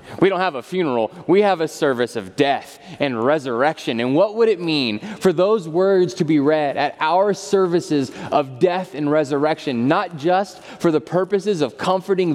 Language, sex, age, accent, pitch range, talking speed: English, male, 20-39, American, 145-190 Hz, 185 wpm